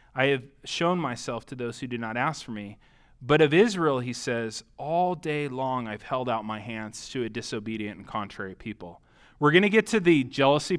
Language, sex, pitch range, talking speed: English, male, 130-170 Hz, 210 wpm